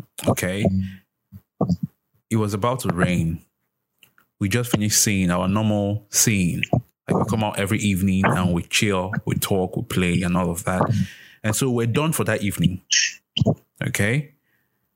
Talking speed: 150 wpm